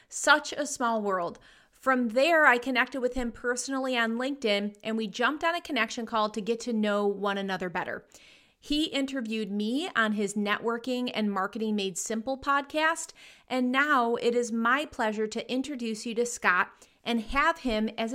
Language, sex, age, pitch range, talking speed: English, female, 30-49, 215-265 Hz, 175 wpm